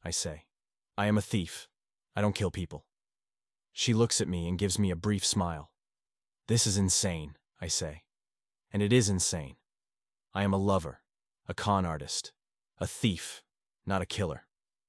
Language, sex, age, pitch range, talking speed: English, male, 30-49, 90-110 Hz, 165 wpm